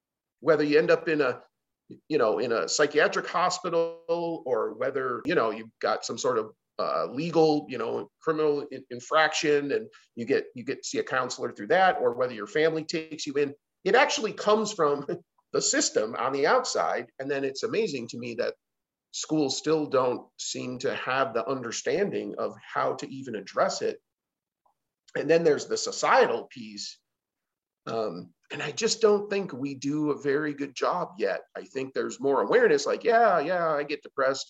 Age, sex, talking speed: 40-59, male, 185 wpm